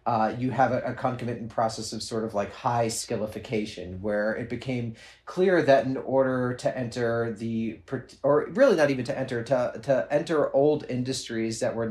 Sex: male